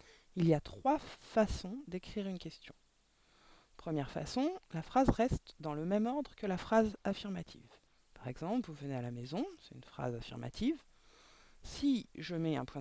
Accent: French